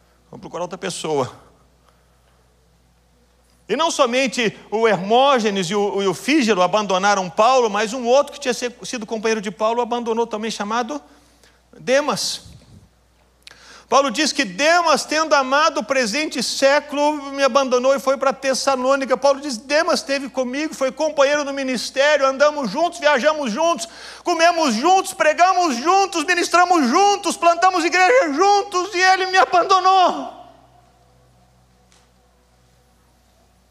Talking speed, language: 125 wpm, Portuguese